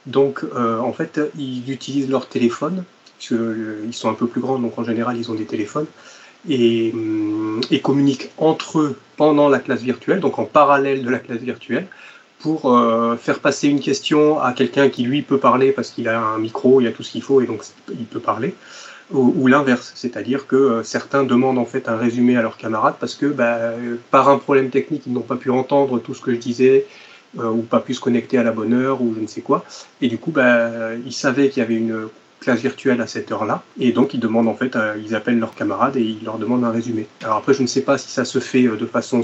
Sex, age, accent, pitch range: male, 30-49, French, 115-135 Hz